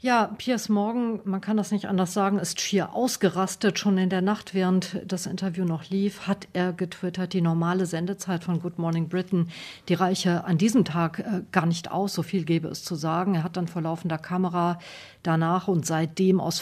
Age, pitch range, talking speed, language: 50-69, 160-195 Hz, 200 wpm, German